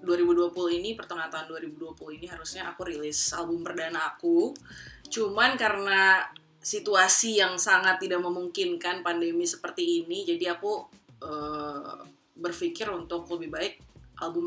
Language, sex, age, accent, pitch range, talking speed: Indonesian, female, 20-39, native, 175-280 Hz, 125 wpm